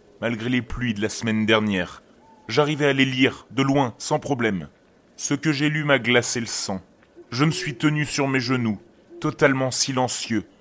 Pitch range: 115-145 Hz